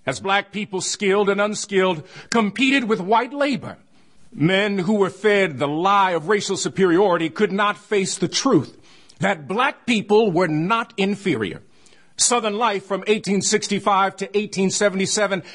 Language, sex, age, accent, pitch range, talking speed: English, male, 50-69, American, 190-230 Hz, 140 wpm